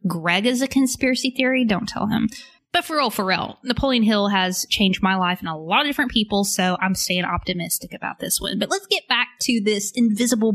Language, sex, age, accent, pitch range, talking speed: English, female, 20-39, American, 185-245 Hz, 220 wpm